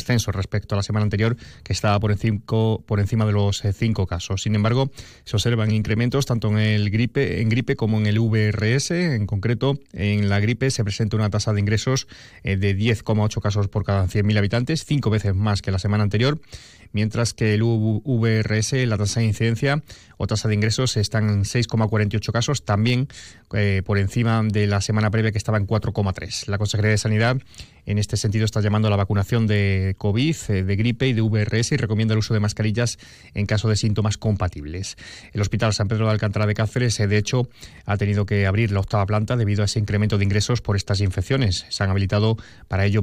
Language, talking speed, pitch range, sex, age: Spanish, 200 wpm, 105-130 Hz, male, 30-49